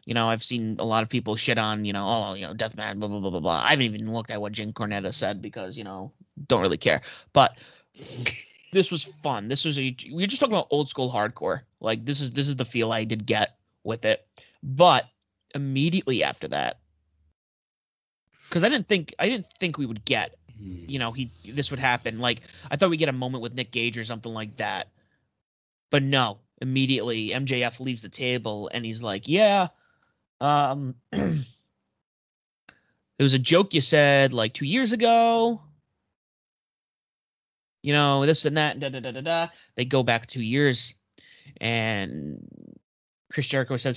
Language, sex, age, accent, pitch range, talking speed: English, male, 30-49, American, 110-145 Hz, 190 wpm